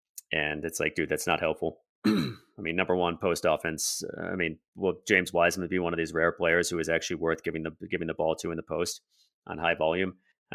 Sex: male